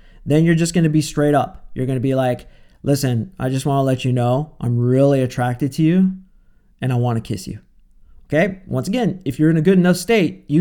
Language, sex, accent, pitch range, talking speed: English, male, American, 135-180 Hz, 245 wpm